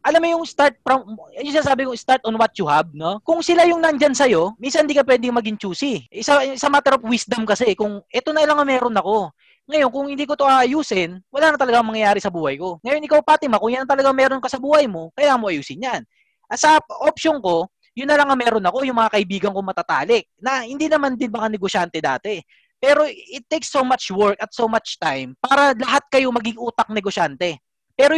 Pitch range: 210-285 Hz